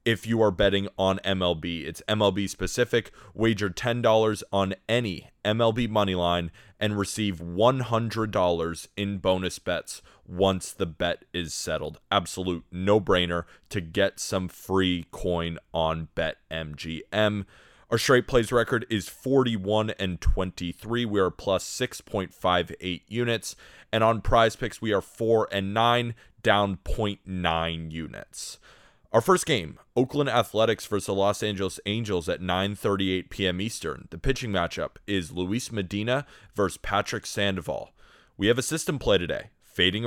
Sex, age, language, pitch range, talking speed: male, 30-49, English, 90-115 Hz, 140 wpm